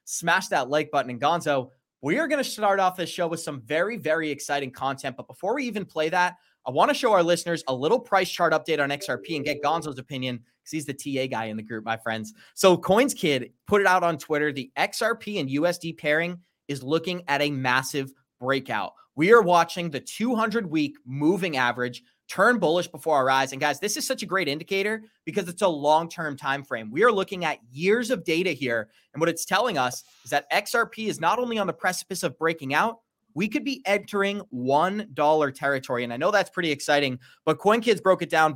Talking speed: 220 wpm